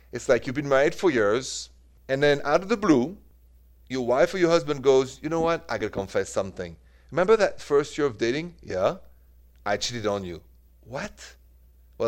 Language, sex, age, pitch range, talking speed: English, male, 40-59, 85-125 Hz, 200 wpm